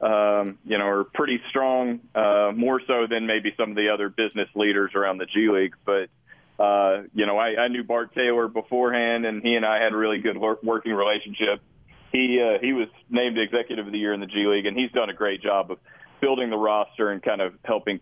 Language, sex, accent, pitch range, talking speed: English, male, American, 100-120 Hz, 225 wpm